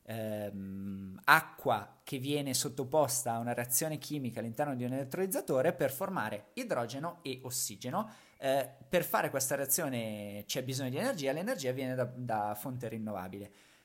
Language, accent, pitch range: Italian, native, 115-155 Hz